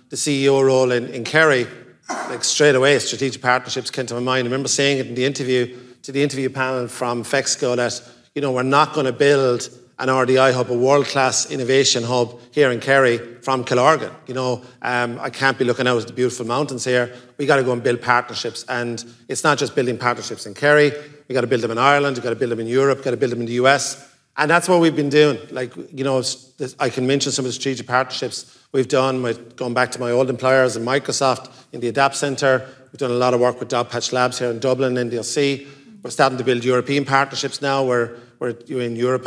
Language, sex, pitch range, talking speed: English, male, 125-135 Hz, 235 wpm